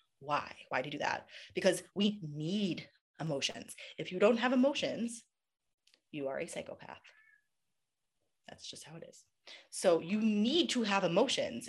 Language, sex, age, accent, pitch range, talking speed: English, female, 30-49, American, 150-200 Hz, 155 wpm